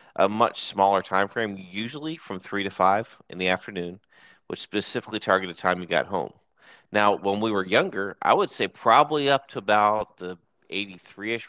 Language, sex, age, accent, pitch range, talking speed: English, male, 30-49, American, 95-110 Hz, 185 wpm